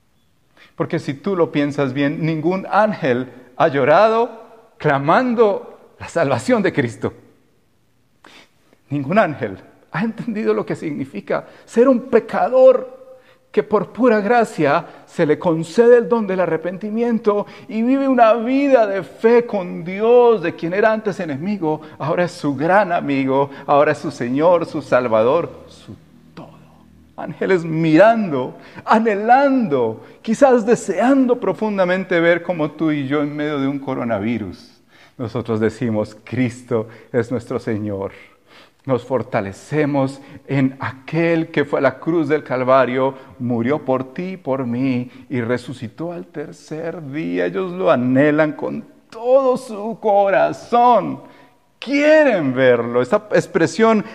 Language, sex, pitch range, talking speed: Spanish, male, 135-220 Hz, 125 wpm